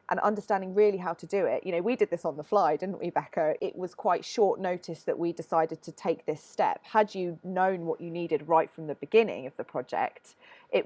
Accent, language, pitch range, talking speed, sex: British, English, 160-190 Hz, 245 wpm, female